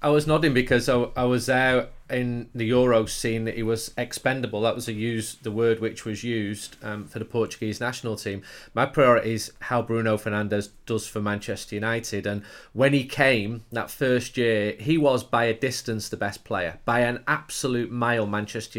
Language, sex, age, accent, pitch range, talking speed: English, male, 30-49, British, 110-130 Hz, 190 wpm